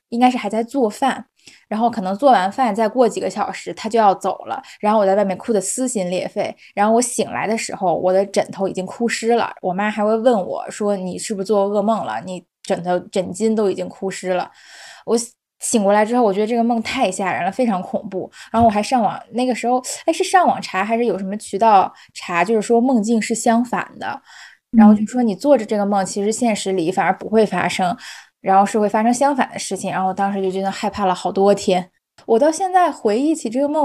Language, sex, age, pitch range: Chinese, female, 10-29, 195-250 Hz